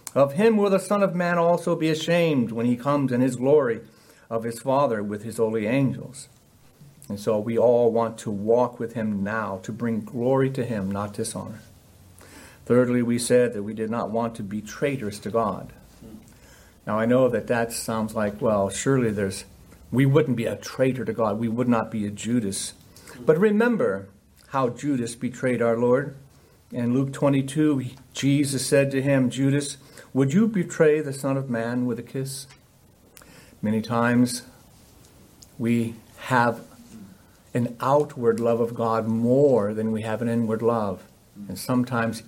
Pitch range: 110-135 Hz